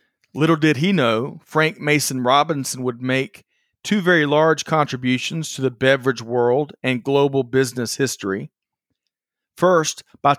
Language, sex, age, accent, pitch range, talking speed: English, male, 40-59, American, 125-155 Hz, 135 wpm